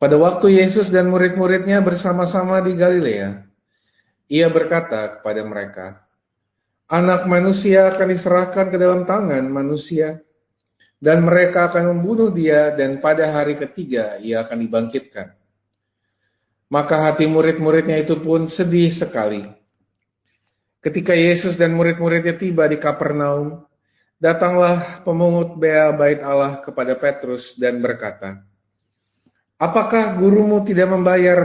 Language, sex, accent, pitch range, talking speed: Indonesian, male, native, 115-175 Hz, 115 wpm